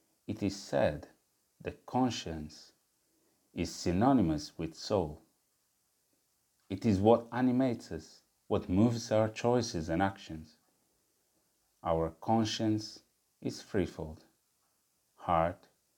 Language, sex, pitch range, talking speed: English, male, 85-120 Hz, 95 wpm